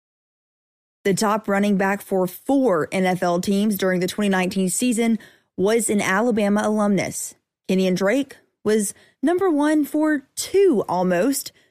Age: 20-39